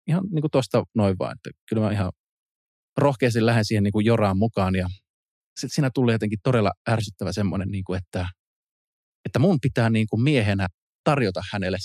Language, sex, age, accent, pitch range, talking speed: Finnish, male, 20-39, native, 95-120 Hz, 155 wpm